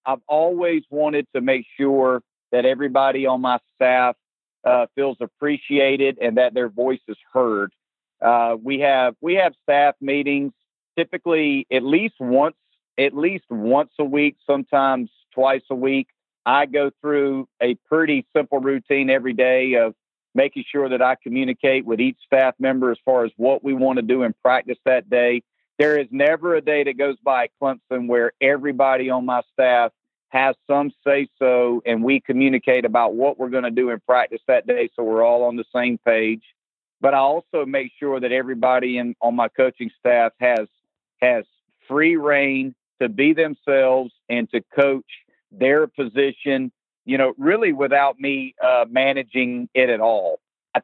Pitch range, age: 125-140 Hz, 50-69